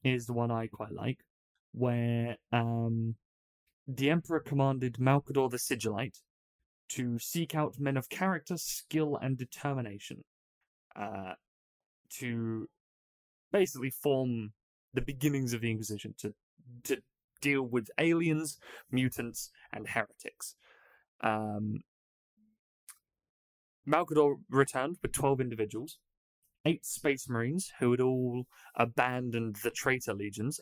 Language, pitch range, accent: English, 110-140 Hz, British